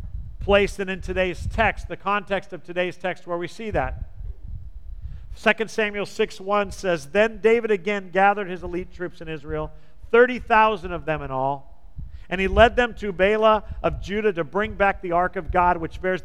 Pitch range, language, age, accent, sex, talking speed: 170-215 Hz, English, 50-69, American, male, 180 wpm